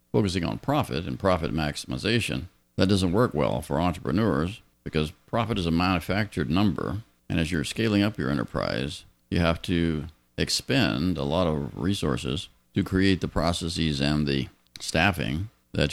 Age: 50-69